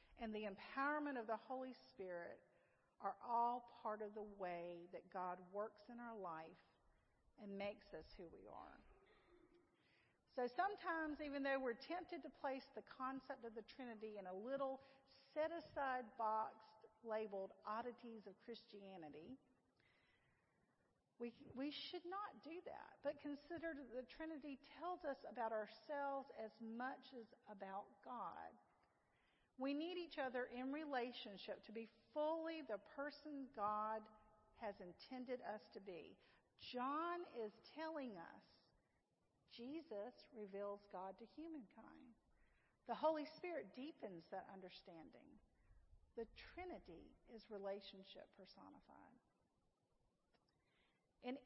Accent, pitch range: American, 210-280 Hz